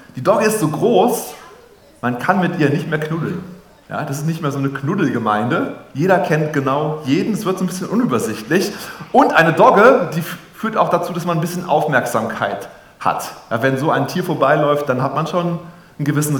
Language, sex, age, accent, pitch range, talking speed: German, male, 30-49, German, 125-175 Hz, 205 wpm